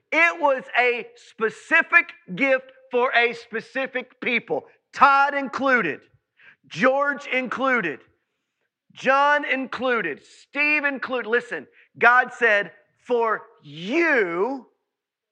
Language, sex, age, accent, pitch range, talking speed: English, male, 40-59, American, 155-240 Hz, 85 wpm